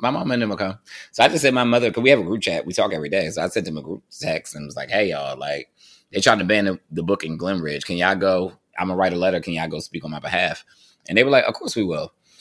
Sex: male